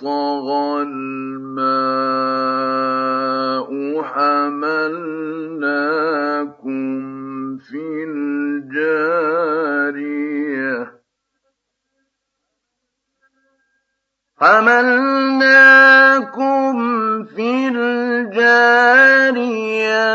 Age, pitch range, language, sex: 50-69, 220-270 Hz, Arabic, male